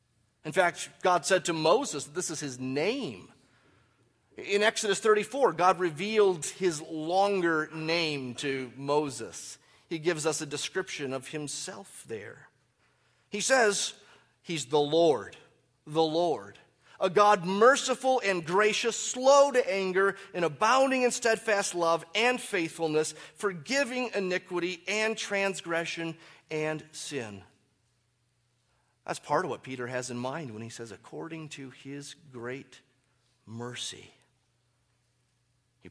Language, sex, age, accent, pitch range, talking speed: English, male, 30-49, American, 125-195 Hz, 120 wpm